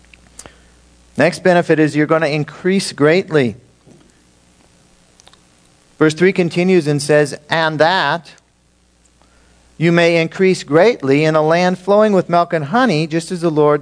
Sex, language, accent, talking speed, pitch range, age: male, English, American, 135 wpm, 120-175 Hz, 50-69